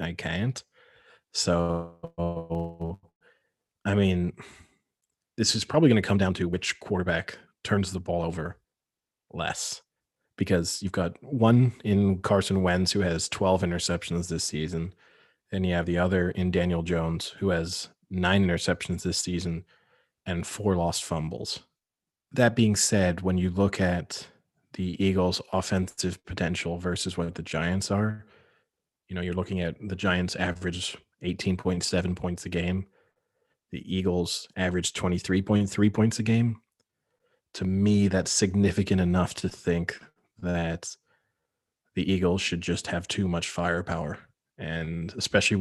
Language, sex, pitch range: English, male, 85-100 Hz